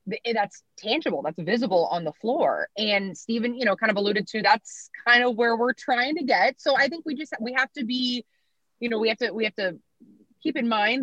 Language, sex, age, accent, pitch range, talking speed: English, female, 20-39, American, 190-255 Hz, 235 wpm